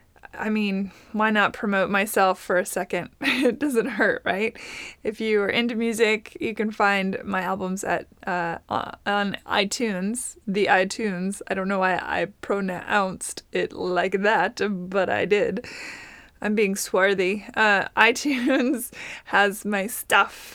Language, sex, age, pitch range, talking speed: English, female, 20-39, 200-245 Hz, 145 wpm